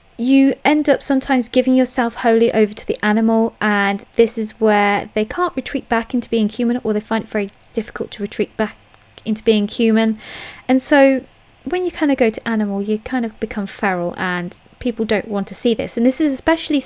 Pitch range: 220-280 Hz